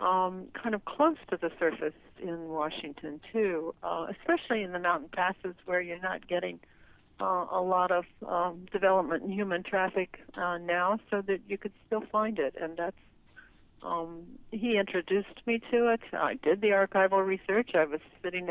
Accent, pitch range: American, 165-195 Hz